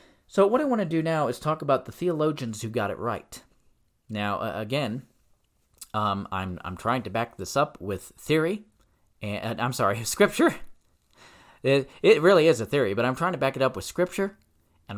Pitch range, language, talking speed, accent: 100-150 Hz, English, 200 wpm, American